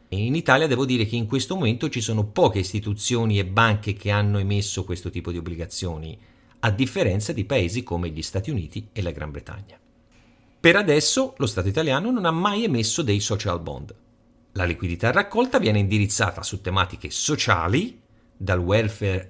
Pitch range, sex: 90-125 Hz, male